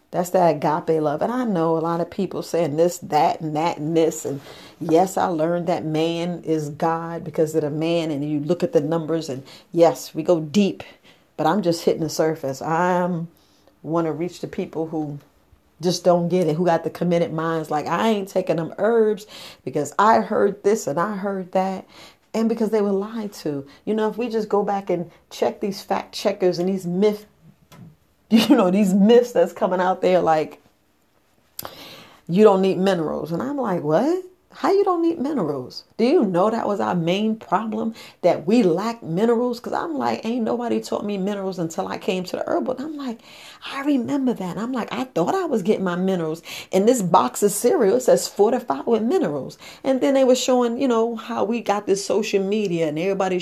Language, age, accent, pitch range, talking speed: English, 40-59, American, 165-215 Hz, 210 wpm